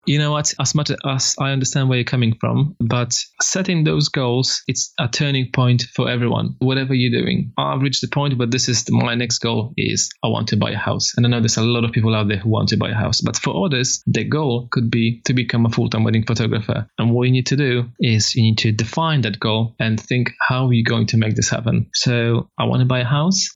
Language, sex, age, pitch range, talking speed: English, male, 20-39, 115-130 Hz, 255 wpm